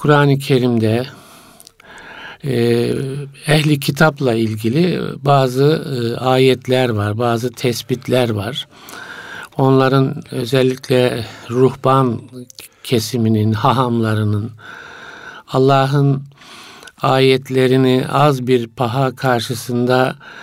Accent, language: native, Turkish